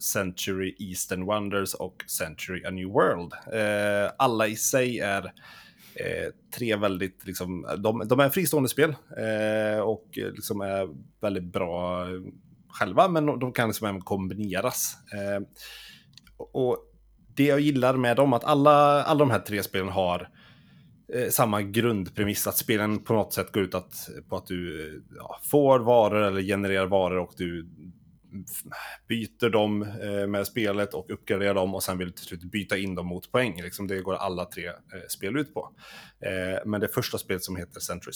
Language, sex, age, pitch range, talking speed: Swedish, male, 30-49, 95-120 Hz, 160 wpm